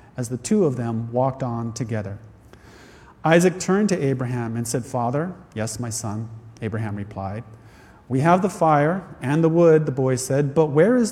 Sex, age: male, 40-59